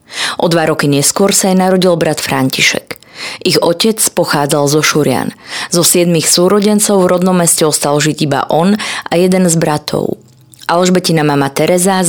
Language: Slovak